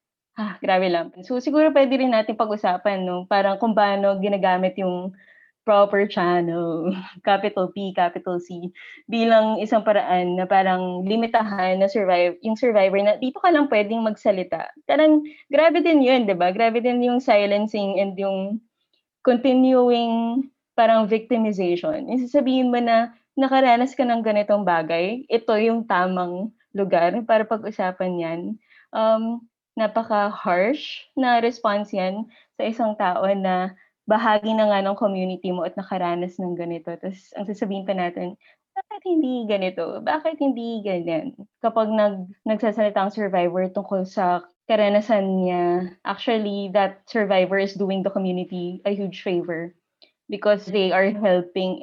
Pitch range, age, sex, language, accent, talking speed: 185-230 Hz, 20-39, female, English, Filipino, 140 wpm